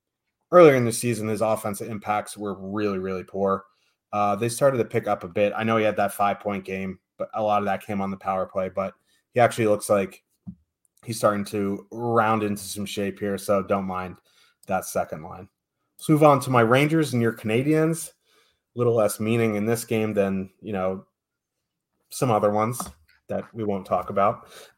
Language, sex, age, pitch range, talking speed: English, male, 30-49, 105-125 Hz, 200 wpm